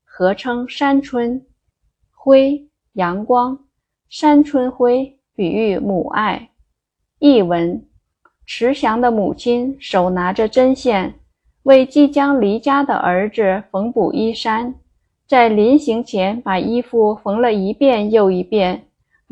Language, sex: Chinese, female